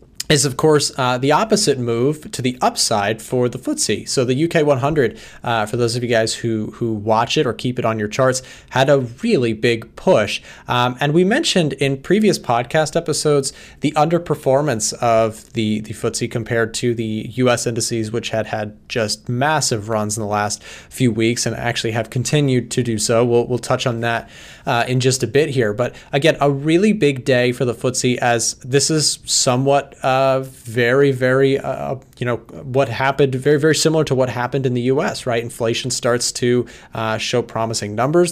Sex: male